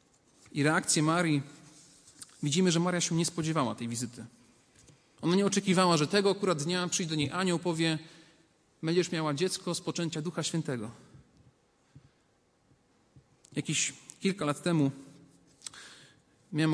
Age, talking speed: 40-59, 125 wpm